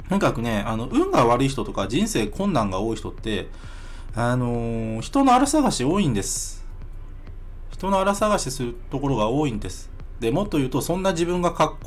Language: Japanese